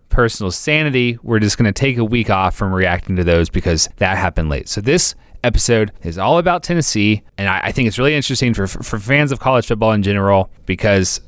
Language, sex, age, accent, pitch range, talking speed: English, male, 30-49, American, 105-140 Hz, 220 wpm